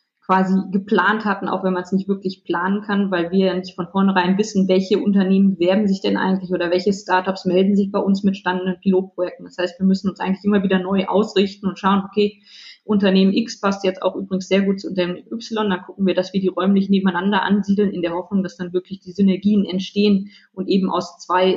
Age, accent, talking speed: 20-39, German, 225 wpm